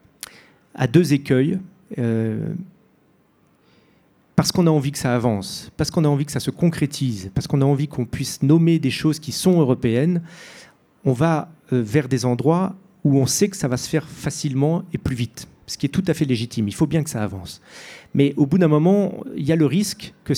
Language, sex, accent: French, male, French